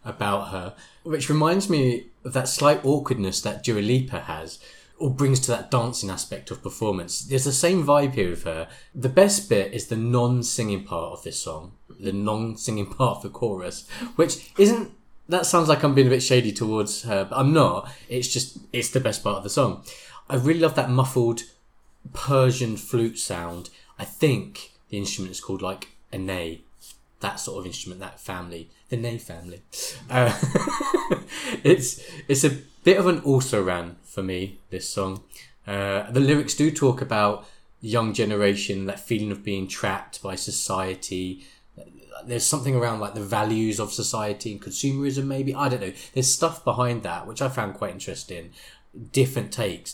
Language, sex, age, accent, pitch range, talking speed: English, male, 20-39, British, 100-135 Hz, 175 wpm